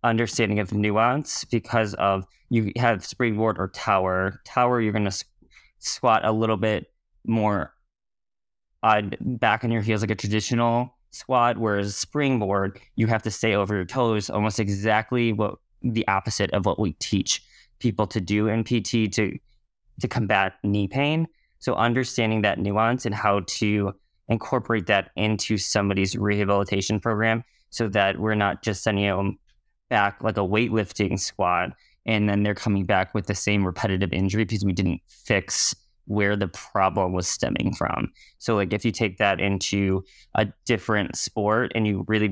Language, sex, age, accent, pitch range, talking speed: English, male, 20-39, American, 100-115 Hz, 165 wpm